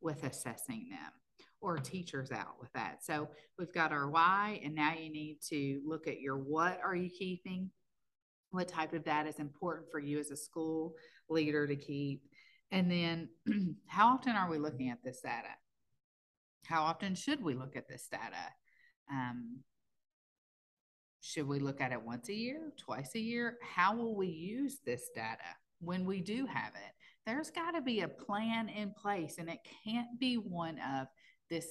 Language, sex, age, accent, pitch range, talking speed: English, female, 40-59, American, 135-185 Hz, 180 wpm